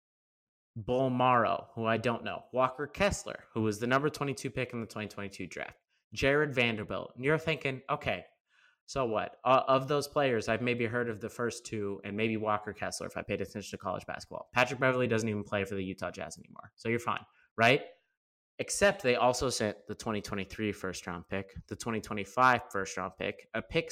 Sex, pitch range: male, 105-130 Hz